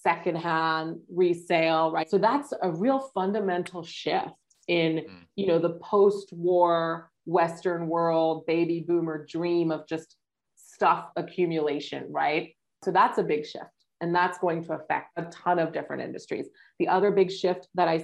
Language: English